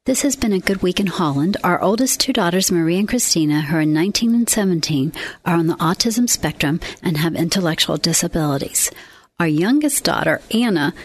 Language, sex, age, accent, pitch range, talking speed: English, female, 40-59, American, 175-225 Hz, 180 wpm